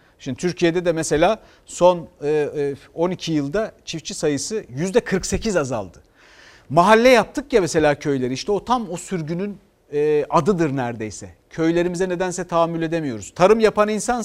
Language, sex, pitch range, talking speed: Turkish, male, 145-210 Hz, 125 wpm